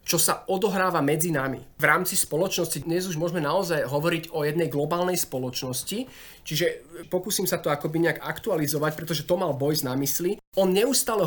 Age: 30-49